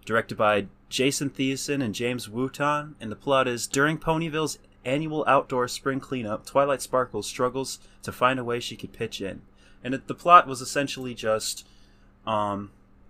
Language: English